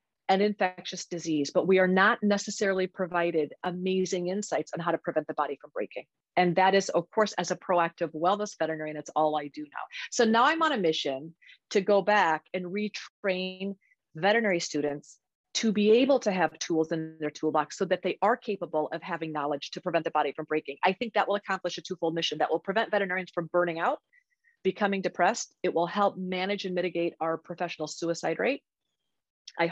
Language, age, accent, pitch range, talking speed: English, 30-49, American, 170-215 Hz, 200 wpm